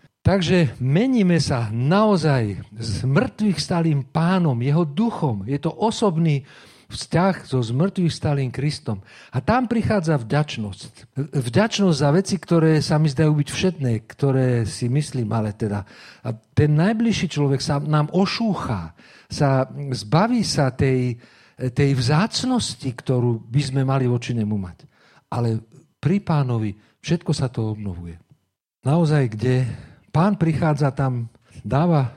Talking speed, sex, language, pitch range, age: 125 wpm, male, Slovak, 125-165 Hz, 50-69